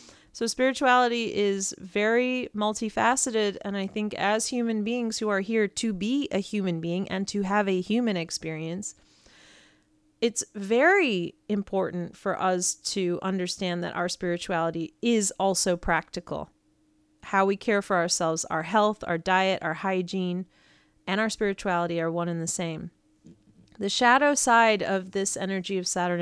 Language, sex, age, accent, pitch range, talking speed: English, female, 30-49, American, 180-230 Hz, 150 wpm